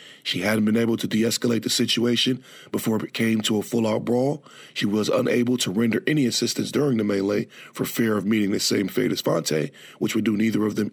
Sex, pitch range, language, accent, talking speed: male, 105-120 Hz, English, American, 220 wpm